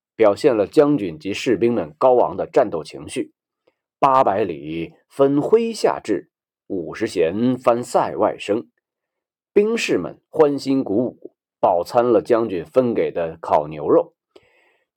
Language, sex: Chinese, male